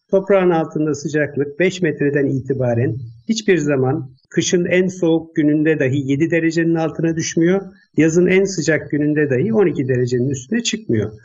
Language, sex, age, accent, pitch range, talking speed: Turkish, male, 50-69, native, 135-175 Hz, 140 wpm